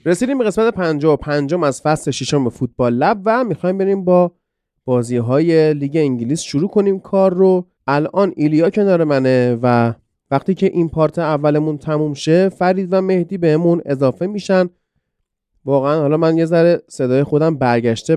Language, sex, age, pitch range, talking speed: Persian, male, 30-49, 125-175 Hz, 160 wpm